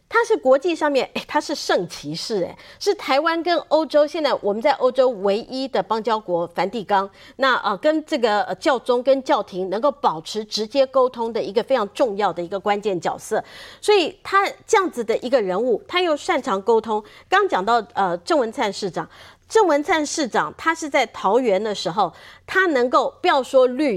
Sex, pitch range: female, 210-315 Hz